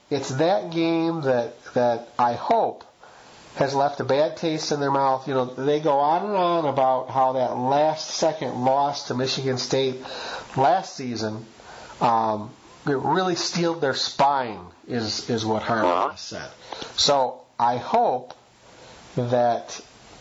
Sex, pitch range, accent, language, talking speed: male, 125-160 Hz, American, English, 145 wpm